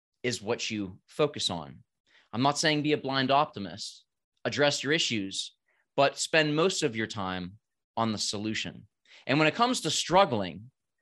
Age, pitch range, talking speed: 30-49, 110-150 Hz, 165 wpm